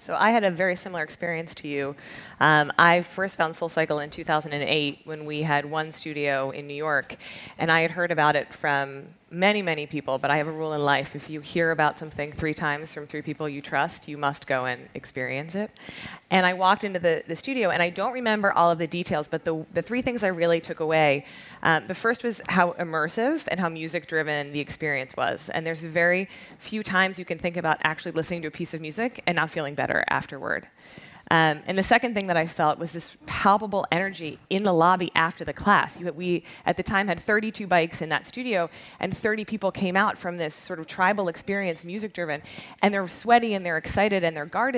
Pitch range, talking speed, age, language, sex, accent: 155-190 Hz, 225 wpm, 20-39, English, female, American